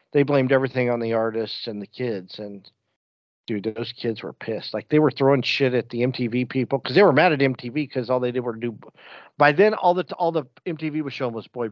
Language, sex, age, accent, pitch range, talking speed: English, male, 50-69, American, 110-135 Hz, 245 wpm